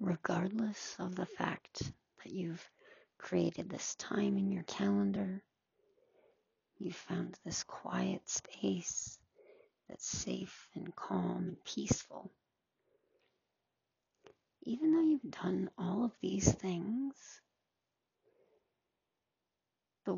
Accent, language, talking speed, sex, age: American, English, 95 wpm, female, 40-59